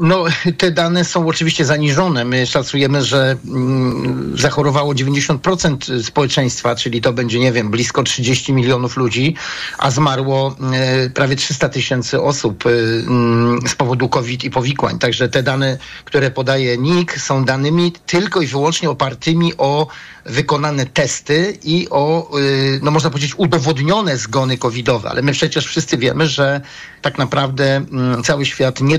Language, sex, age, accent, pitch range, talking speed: Polish, male, 50-69, native, 130-150 Hz, 135 wpm